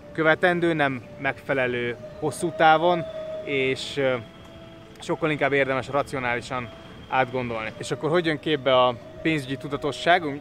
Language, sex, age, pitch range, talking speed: Hungarian, male, 20-39, 125-155 Hz, 110 wpm